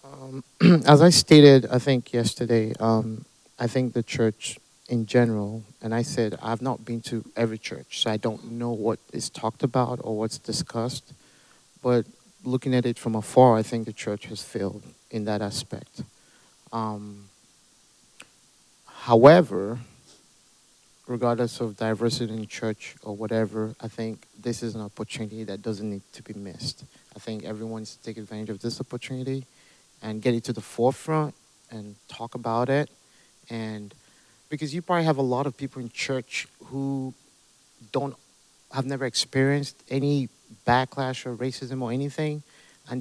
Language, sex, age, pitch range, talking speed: English, male, 50-69, 110-130 Hz, 160 wpm